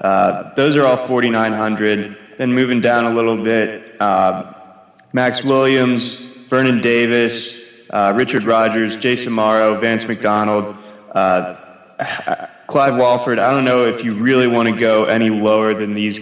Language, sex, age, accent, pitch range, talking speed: English, male, 20-39, American, 105-120 Hz, 150 wpm